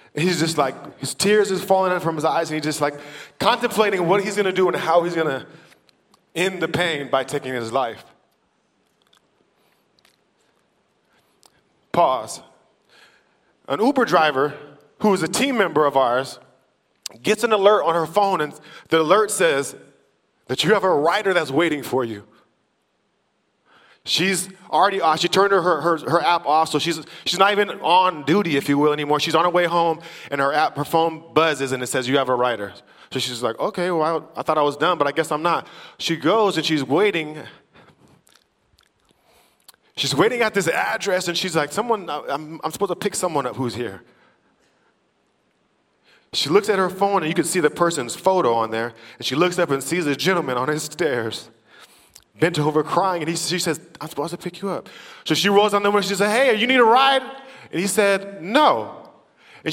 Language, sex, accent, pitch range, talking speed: English, male, American, 155-200 Hz, 200 wpm